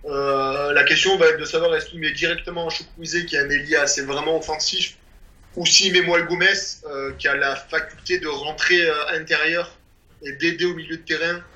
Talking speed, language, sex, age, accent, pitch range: 195 wpm, French, male, 20-39, French, 140-170 Hz